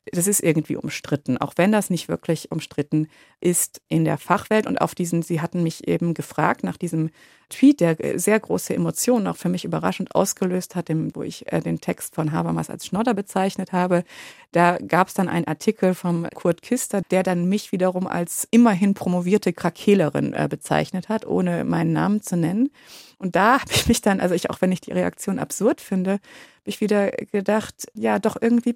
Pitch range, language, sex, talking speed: 170-220 Hz, German, female, 190 wpm